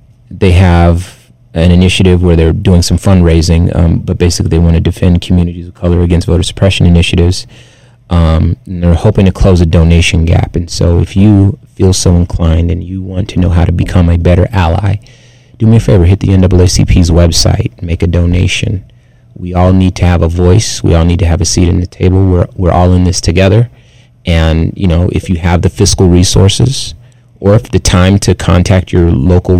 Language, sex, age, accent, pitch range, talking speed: English, male, 30-49, American, 90-120 Hz, 205 wpm